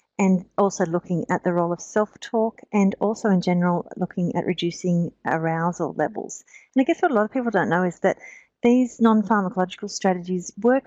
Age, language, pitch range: 40-59, English, 170-210 Hz